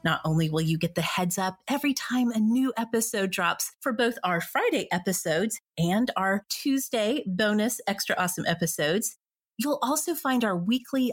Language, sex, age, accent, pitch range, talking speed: English, female, 30-49, American, 180-265 Hz, 165 wpm